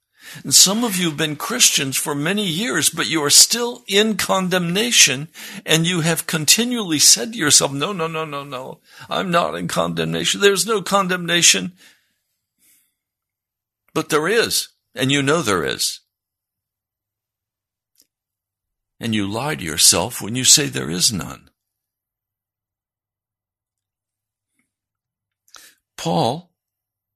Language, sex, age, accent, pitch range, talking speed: English, male, 60-79, American, 100-165 Hz, 120 wpm